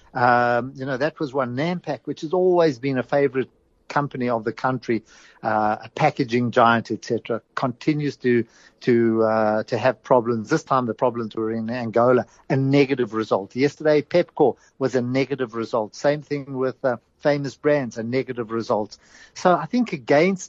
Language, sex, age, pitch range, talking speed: English, male, 60-79, 115-140 Hz, 170 wpm